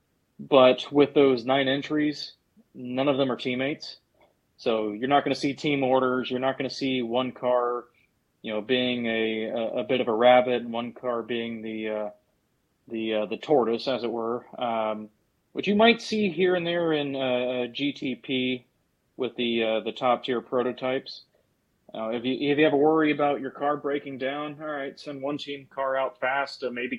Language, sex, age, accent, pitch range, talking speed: English, male, 30-49, American, 115-140 Hz, 200 wpm